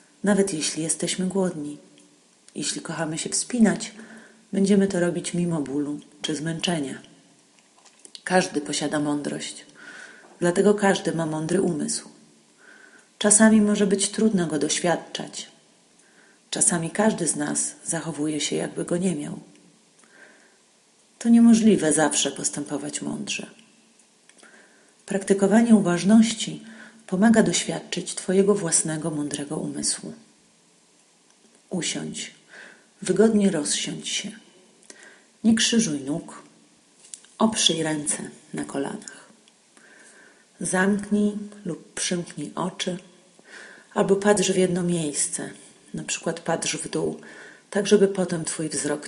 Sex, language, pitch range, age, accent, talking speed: female, Polish, 155-200 Hz, 40-59, native, 100 wpm